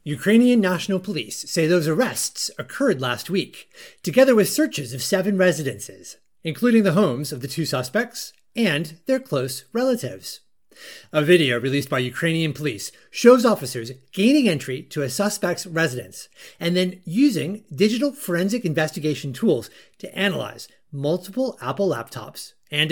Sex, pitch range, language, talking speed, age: male, 140-225 Hz, English, 140 wpm, 30-49